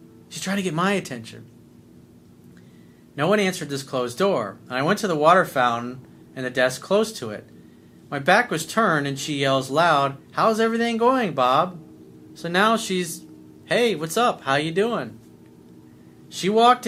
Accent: American